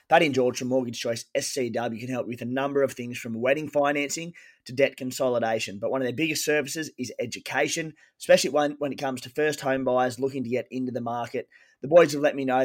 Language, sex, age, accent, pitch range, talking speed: English, male, 20-39, Australian, 120-145 Hz, 230 wpm